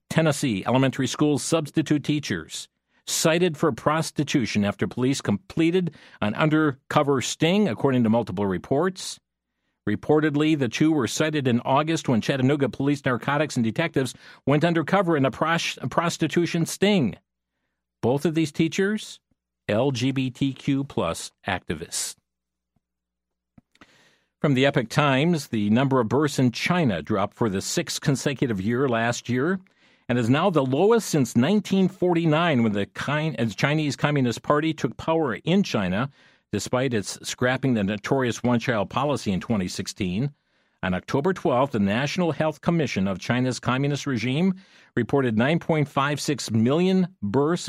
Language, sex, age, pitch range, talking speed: English, male, 50-69, 115-160 Hz, 130 wpm